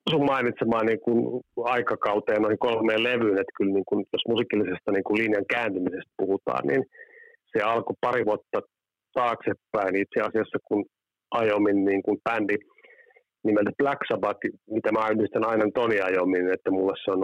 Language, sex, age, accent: Finnish, male, 30-49, native